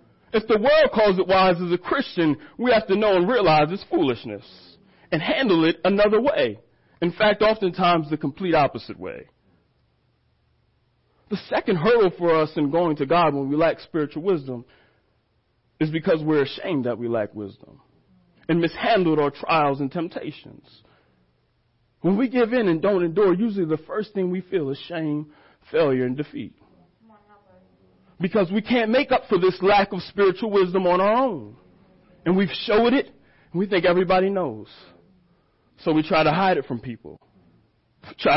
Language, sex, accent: English, male, American